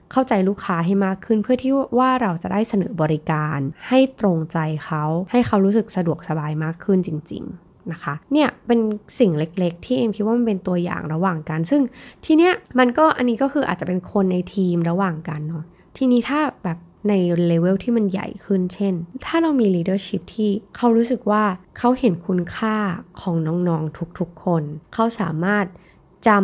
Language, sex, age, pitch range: Thai, female, 20-39, 170-230 Hz